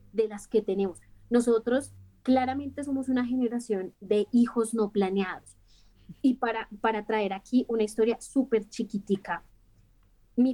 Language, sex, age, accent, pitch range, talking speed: Spanish, female, 20-39, Colombian, 195-240 Hz, 130 wpm